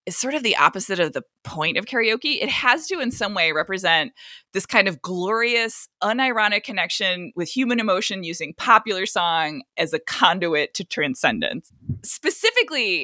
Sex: female